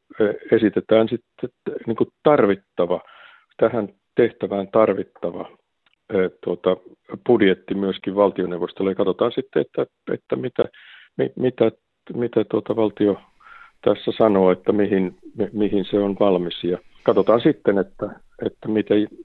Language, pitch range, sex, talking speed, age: Hungarian, 95-110 Hz, male, 100 wpm, 50-69